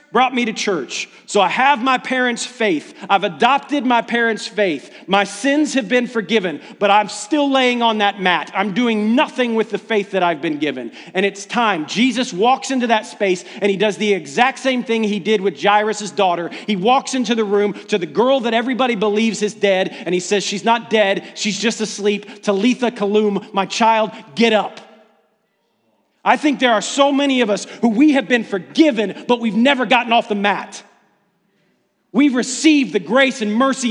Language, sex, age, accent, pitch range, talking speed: English, male, 40-59, American, 210-285 Hz, 195 wpm